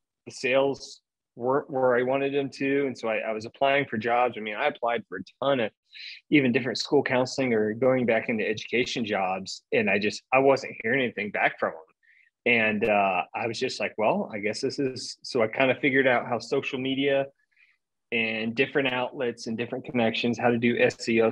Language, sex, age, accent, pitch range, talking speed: English, male, 30-49, American, 115-135 Hz, 210 wpm